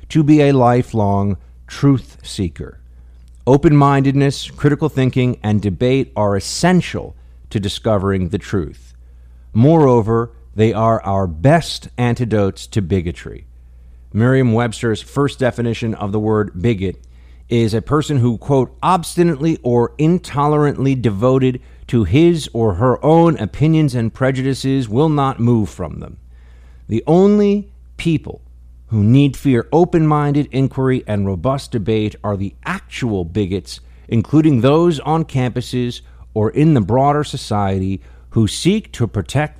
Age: 50-69